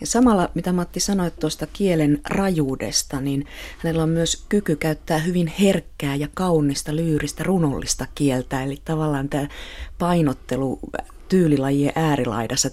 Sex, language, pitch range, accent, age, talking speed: female, Finnish, 135-160 Hz, native, 30-49, 125 wpm